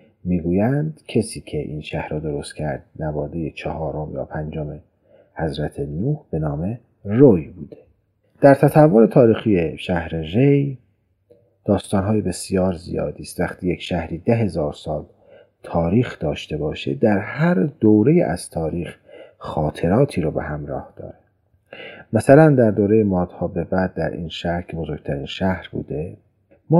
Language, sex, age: Persian, male, 40-59